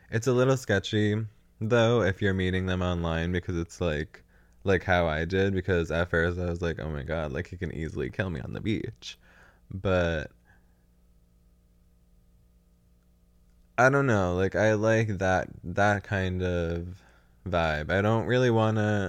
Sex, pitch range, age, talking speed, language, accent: male, 85-105 Hz, 20-39, 160 wpm, English, American